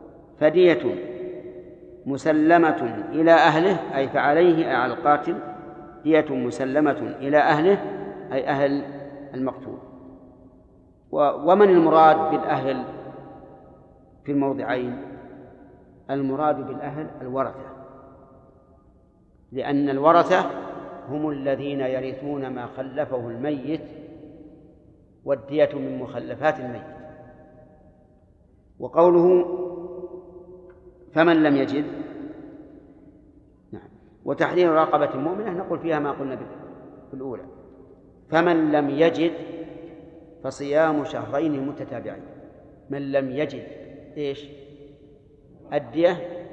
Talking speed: 75 wpm